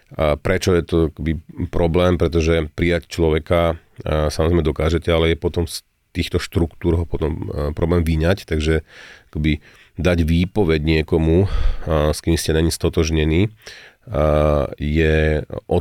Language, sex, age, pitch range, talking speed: Slovak, male, 40-59, 80-90 Hz, 135 wpm